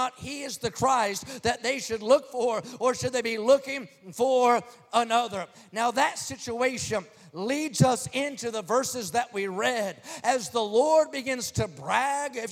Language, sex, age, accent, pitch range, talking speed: English, male, 40-59, American, 220-265 Hz, 165 wpm